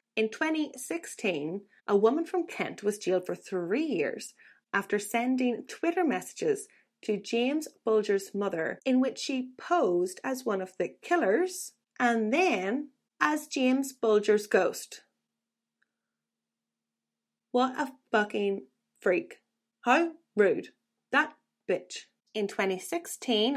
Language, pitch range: English, 185-255 Hz